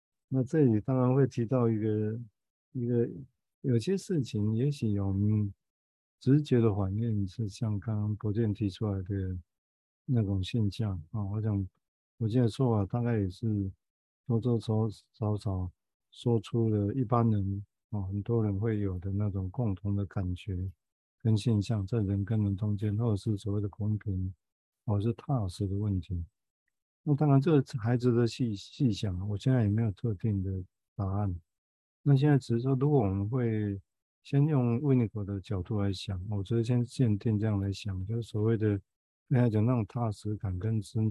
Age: 50-69